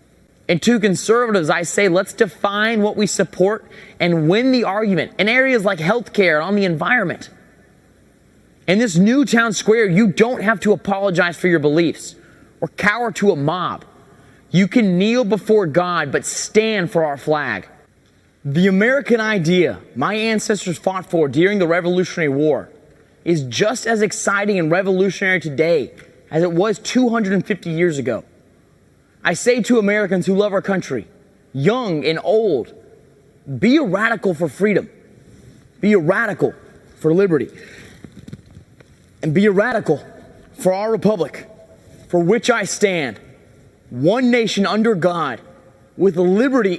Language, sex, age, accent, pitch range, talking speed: English, male, 30-49, American, 165-215 Hz, 145 wpm